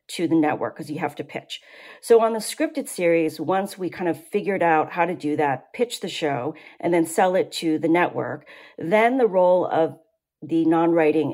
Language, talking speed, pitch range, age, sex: English, 205 wpm, 155-185 Hz, 40-59, female